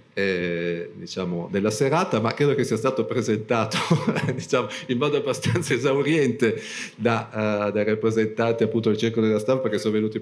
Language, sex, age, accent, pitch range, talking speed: Italian, male, 40-59, native, 105-120 Hz, 160 wpm